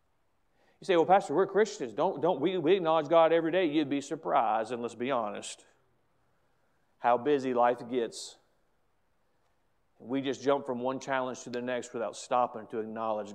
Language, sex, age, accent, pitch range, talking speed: English, male, 40-59, American, 140-230 Hz, 165 wpm